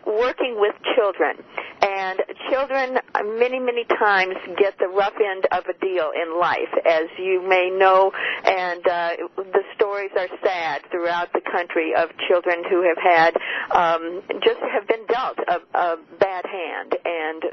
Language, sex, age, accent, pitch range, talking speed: English, female, 50-69, American, 180-245 Hz, 155 wpm